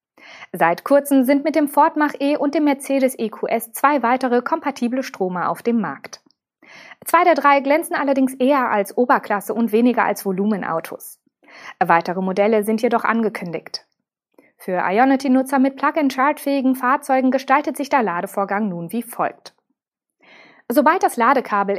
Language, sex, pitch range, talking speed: German, female, 200-270 Hz, 140 wpm